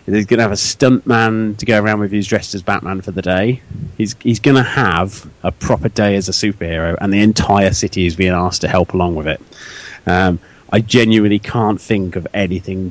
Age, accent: 30-49, British